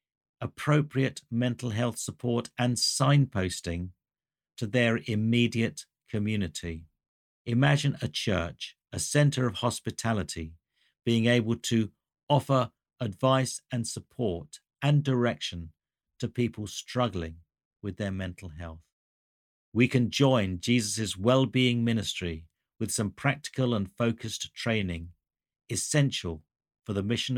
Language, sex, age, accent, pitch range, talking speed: English, male, 50-69, British, 95-125 Hz, 105 wpm